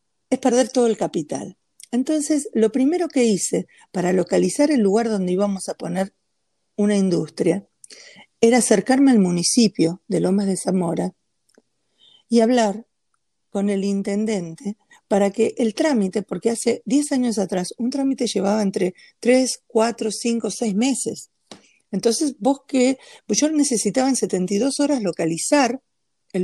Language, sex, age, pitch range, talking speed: Spanish, female, 50-69, 190-255 Hz, 140 wpm